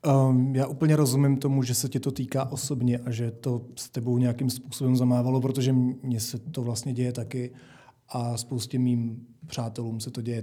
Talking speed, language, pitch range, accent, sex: 190 wpm, Czech, 120-135 Hz, native, male